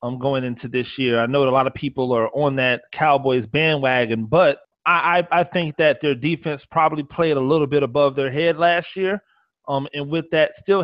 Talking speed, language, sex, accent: 225 wpm, English, male, American